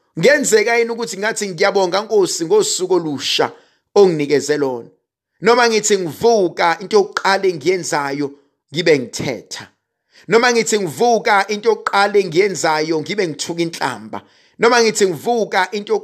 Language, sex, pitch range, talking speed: English, male, 150-225 Hz, 100 wpm